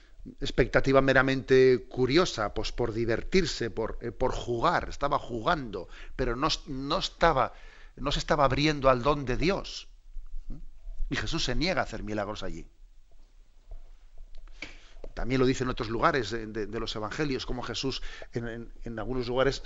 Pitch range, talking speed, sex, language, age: 115-145 Hz, 145 wpm, male, Spanish, 40-59